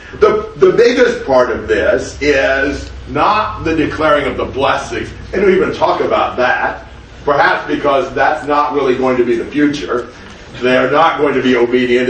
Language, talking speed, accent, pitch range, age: English, 180 wpm, American, 135-220 Hz, 50-69